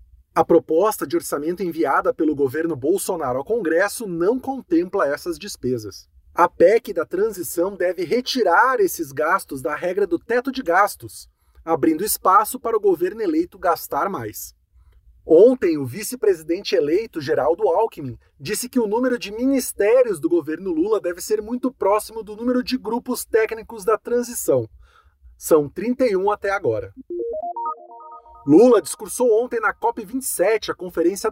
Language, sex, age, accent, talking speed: English, male, 30-49, Brazilian, 140 wpm